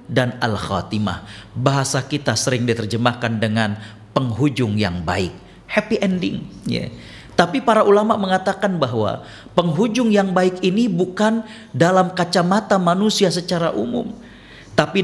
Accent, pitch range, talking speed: native, 130-200 Hz, 120 wpm